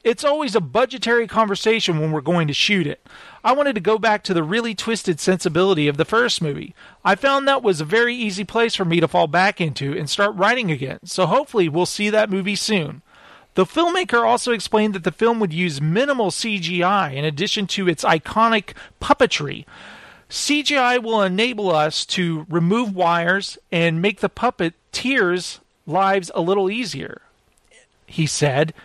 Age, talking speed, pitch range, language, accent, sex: 40-59, 175 wpm, 175-235 Hz, English, American, male